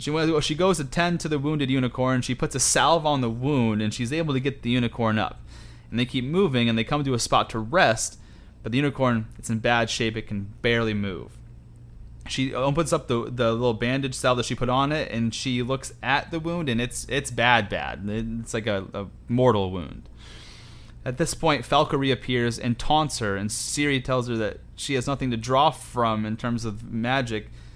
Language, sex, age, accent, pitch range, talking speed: English, male, 30-49, American, 115-135 Hz, 215 wpm